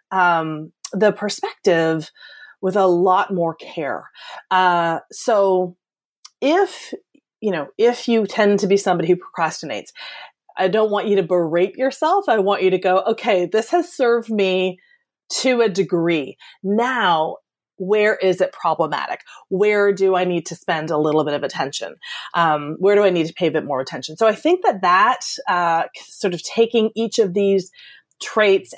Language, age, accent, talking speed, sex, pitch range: English, 30-49, American, 170 wpm, female, 175-230 Hz